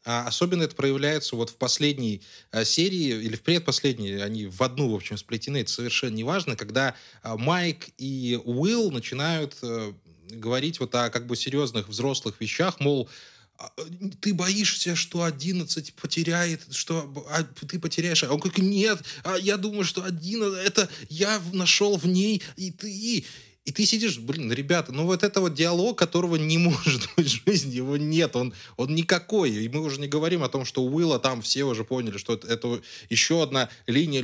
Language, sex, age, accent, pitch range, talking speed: Russian, male, 20-39, native, 125-180 Hz, 175 wpm